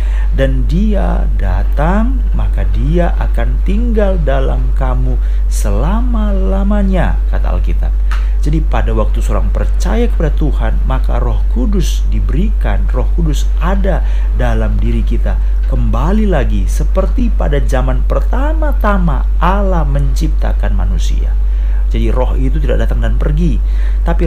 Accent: native